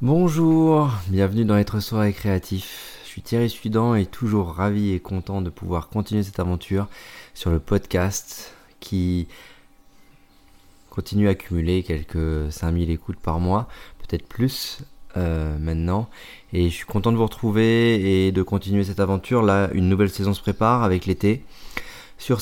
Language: French